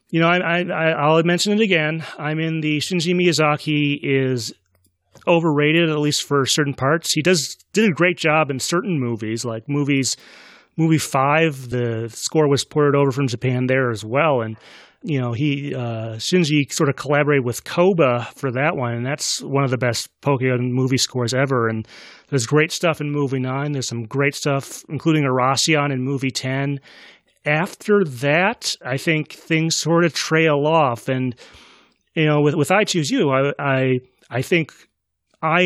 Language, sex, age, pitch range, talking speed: English, male, 30-49, 125-160 Hz, 175 wpm